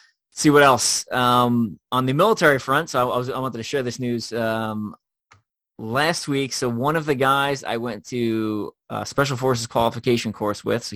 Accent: American